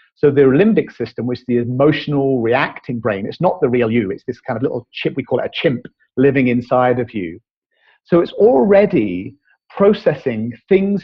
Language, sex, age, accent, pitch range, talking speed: English, male, 40-59, British, 125-160 Hz, 190 wpm